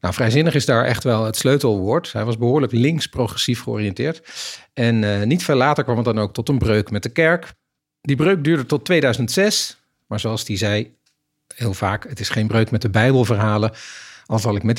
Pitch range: 105-135 Hz